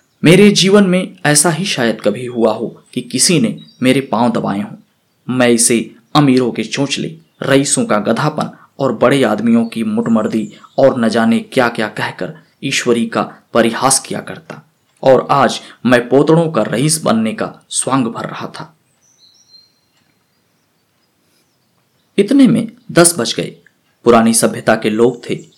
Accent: native